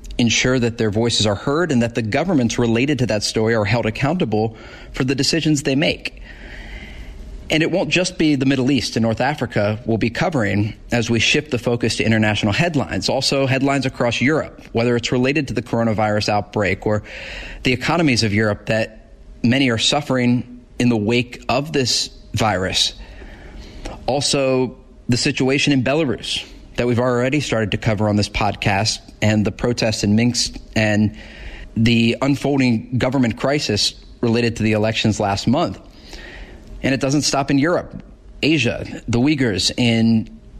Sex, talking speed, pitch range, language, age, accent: male, 165 wpm, 110-130 Hz, English, 30-49, American